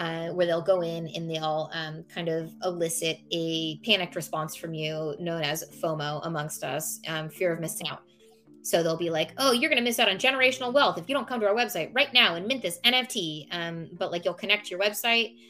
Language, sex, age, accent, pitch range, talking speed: English, female, 20-39, American, 160-190 Hz, 230 wpm